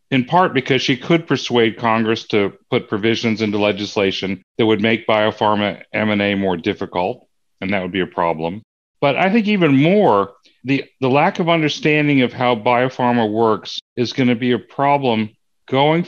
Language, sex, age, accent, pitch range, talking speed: English, male, 40-59, American, 105-130 Hz, 170 wpm